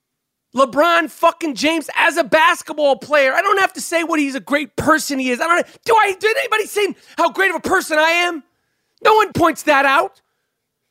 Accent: American